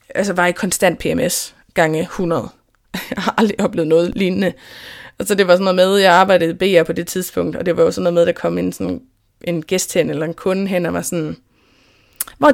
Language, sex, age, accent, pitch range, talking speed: Danish, female, 20-39, native, 175-230 Hz, 245 wpm